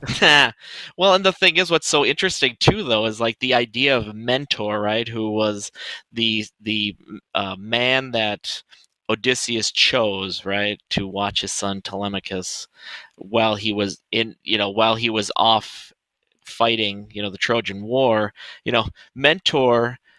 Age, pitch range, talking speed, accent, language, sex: 20-39, 105-130 Hz, 155 wpm, American, English, male